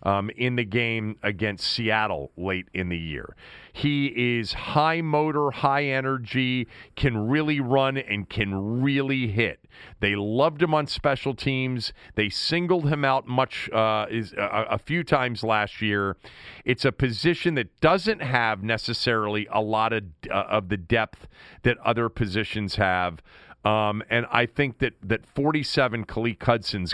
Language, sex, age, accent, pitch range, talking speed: English, male, 40-59, American, 100-135 Hz, 155 wpm